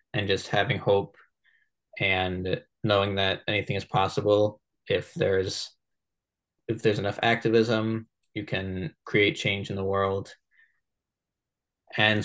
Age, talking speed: 20-39, 120 wpm